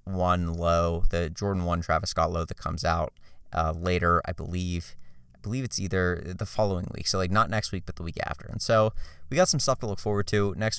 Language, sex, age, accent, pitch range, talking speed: English, male, 30-49, American, 90-110 Hz, 235 wpm